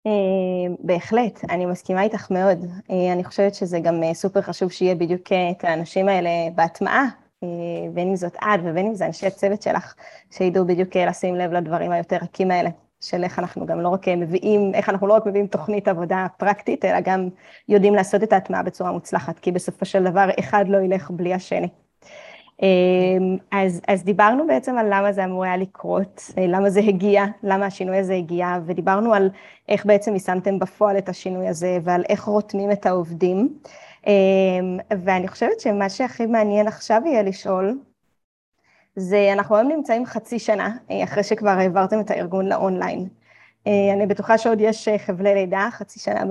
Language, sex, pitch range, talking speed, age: English, female, 185-205 Hz, 105 wpm, 20-39